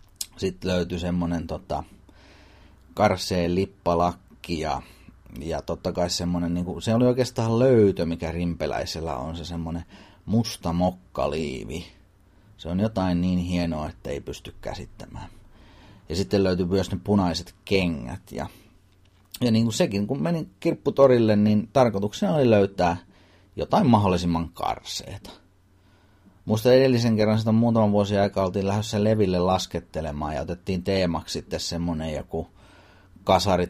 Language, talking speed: Finnish, 125 wpm